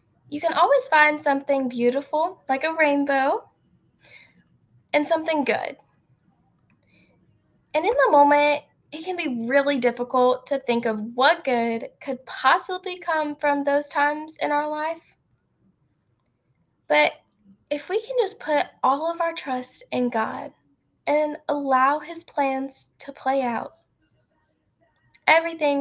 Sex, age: female, 10-29